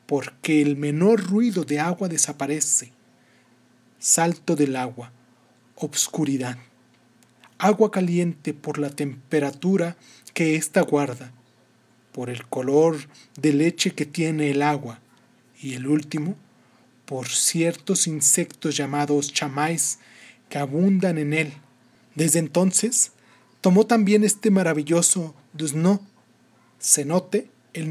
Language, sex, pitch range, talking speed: Spanish, male, 130-175 Hz, 105 wpm